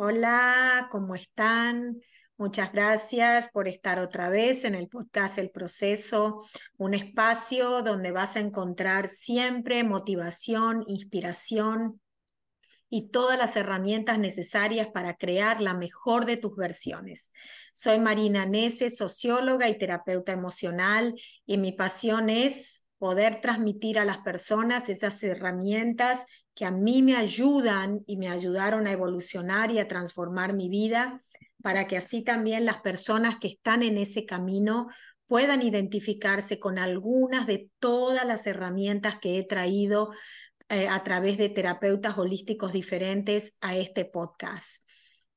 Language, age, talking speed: Spanish, 30-49, 130 wpm